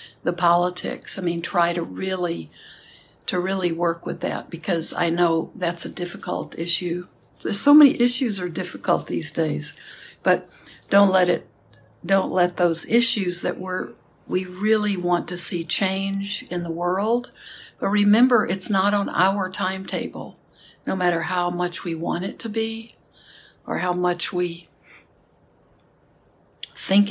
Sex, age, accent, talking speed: female, 60-79, American, 150 wpm